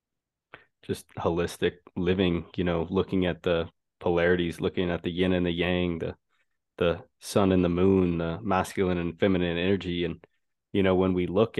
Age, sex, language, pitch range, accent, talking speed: 20-39, male, English, 85-95 Hz, American, 170 wpm